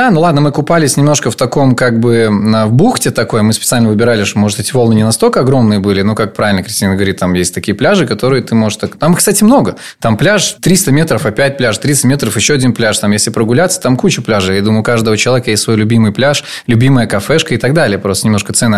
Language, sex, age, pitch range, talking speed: Russian, male, 20-39, 110-135 Hz, 235 wpm